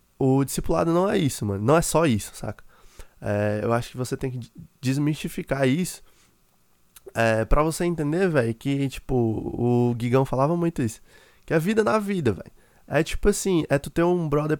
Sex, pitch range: male, 115-150 Hz